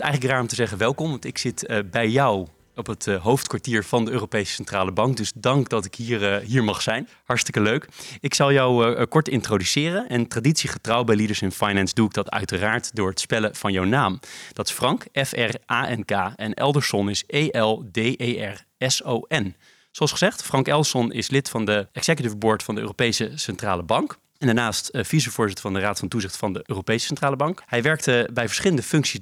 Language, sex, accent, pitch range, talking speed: Dutch, male, Dutch, 105-135 Hz, 190 wpm